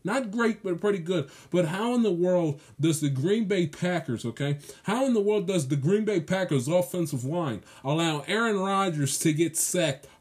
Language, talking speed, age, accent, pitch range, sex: English, 195 wpm, 20-39, American, 145-180 Hz, male